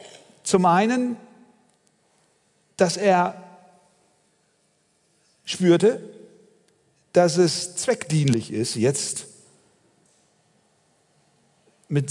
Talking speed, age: 55 wpm, 50-69